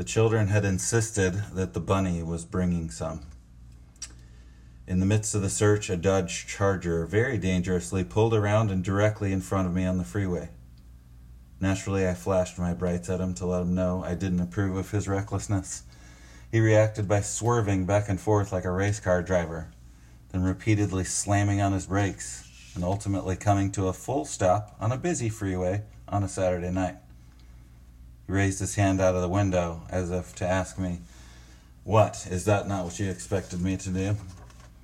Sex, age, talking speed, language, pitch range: male, 30-49, 180 wpm, English, 90-105 Hz